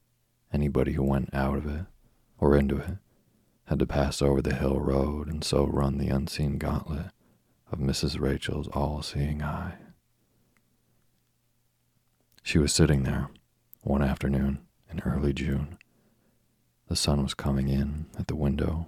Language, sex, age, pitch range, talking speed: English, male, 40-59, 70-80 Hz, 140 wpm